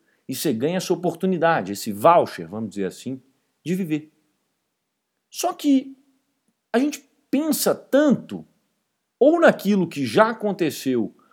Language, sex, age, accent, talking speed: Portuguese, male, 50-69, Brazilian, 120 wpm